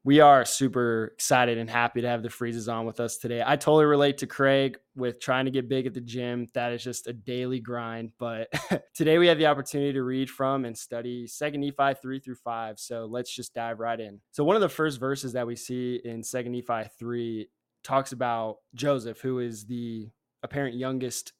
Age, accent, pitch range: 20-39, American, 115-135 Hz